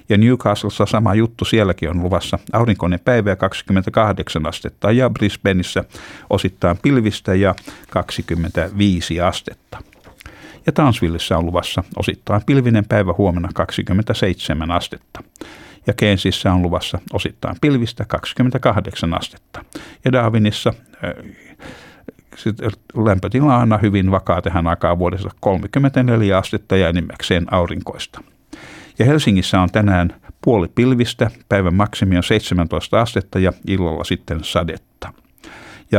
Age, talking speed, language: 60-79, 115 wpm, Finnish